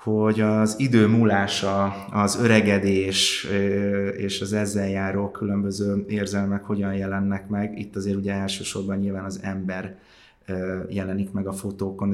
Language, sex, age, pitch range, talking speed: Hungarian, male, 30-49, 95-105 Hz, 130 wpm